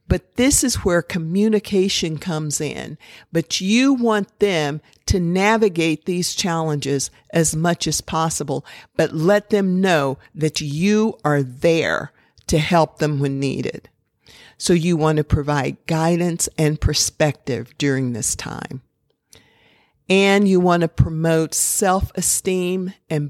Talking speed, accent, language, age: 125 wpm, American, English, 50-69